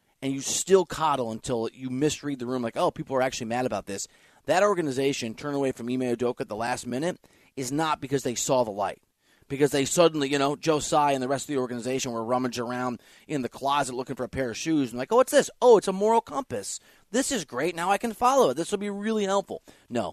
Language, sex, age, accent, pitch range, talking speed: English, male, 30-49, American, 125-175 Hz, 250 wpm